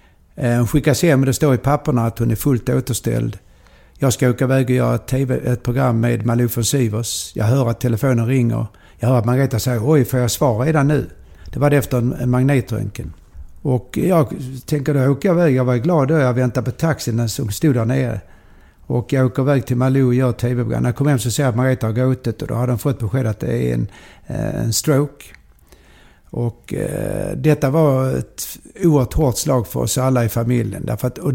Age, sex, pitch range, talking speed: 60-79, male, 115-140 Hz, 215 wpm